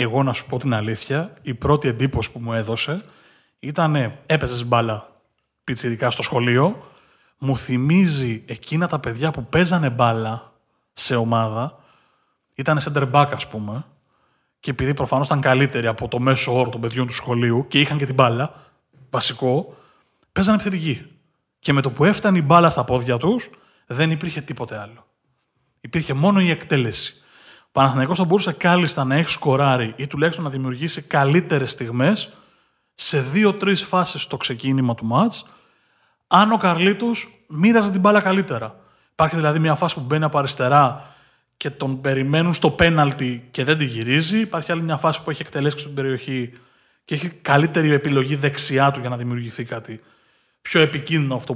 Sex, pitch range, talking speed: male, 125-165 Hz, 160 wpm